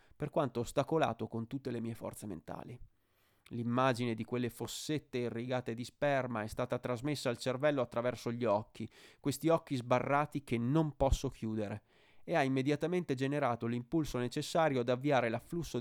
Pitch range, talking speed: 110-135 Hz, 150 wpm